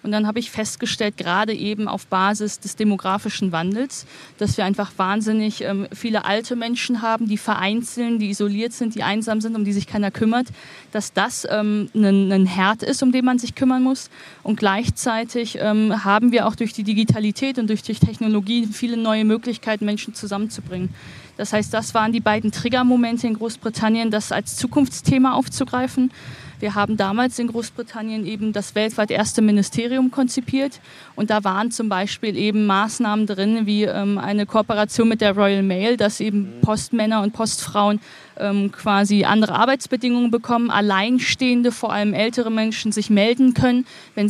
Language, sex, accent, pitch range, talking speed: German, female, German, 205-235 Hz, 160 wpm